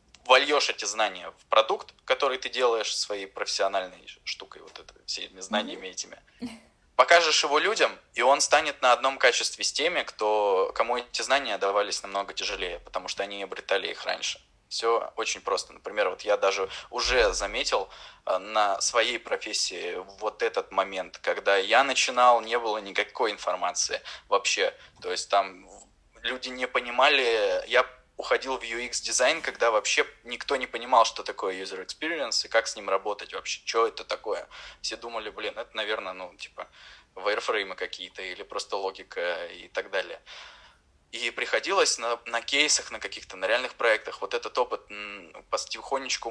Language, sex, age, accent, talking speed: Russian, male, 20-39, native, 155 wpm